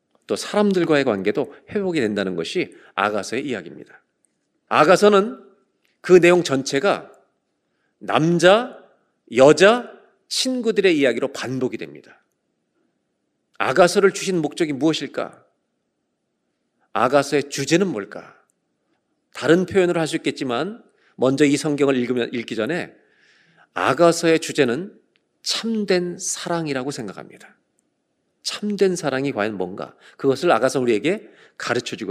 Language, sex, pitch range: Korean, male, 125-175 Hz